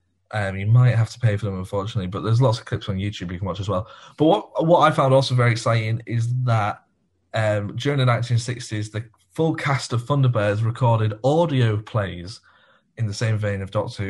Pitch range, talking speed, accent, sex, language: 105-125 Hz, 210 wpm, British, male, English